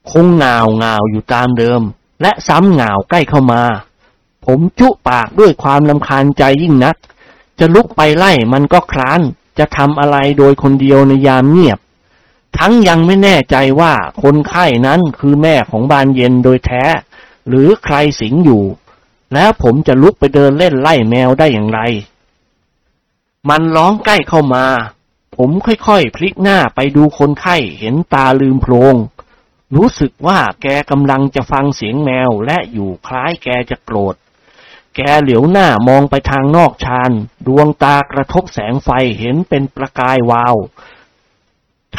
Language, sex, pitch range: Thai, male, 125-155 Hz